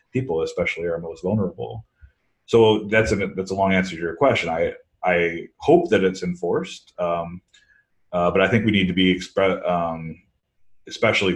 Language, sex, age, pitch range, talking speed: English, male, 30-49, 85-105 Hz, 175 wpm